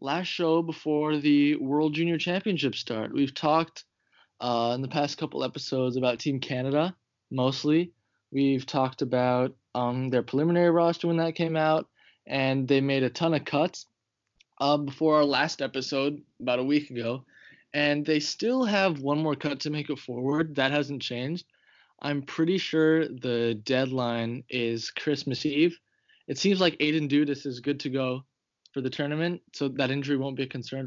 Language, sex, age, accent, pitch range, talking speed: English, male, 20-39, American, 130-155 Hz, 170 wpm